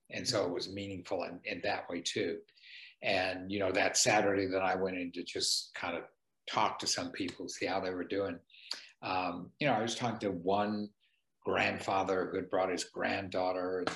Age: 60-79